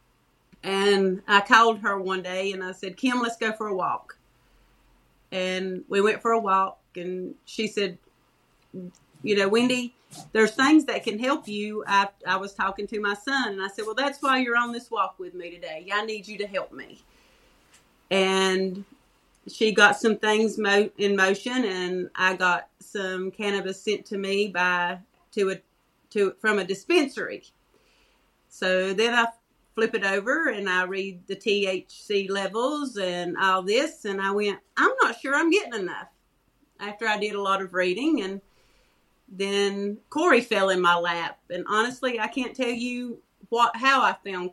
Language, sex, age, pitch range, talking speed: English, female, 40-59, 190-230 Hz, 175 wpm